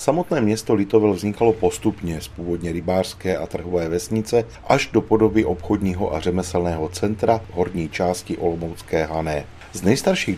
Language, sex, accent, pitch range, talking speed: Czech, male, native, 85-110 Hz, 145 wpm